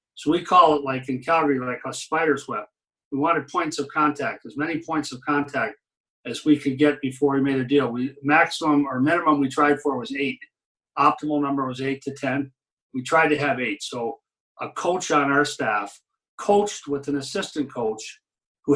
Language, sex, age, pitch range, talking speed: English, male, 50-69, 135-155 Hz, 200 wpm